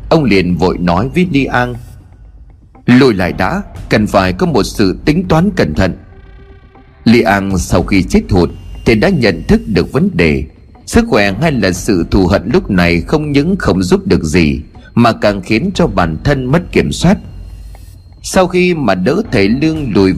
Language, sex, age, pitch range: Vietnamese, male, 30-49, 90-140 Hz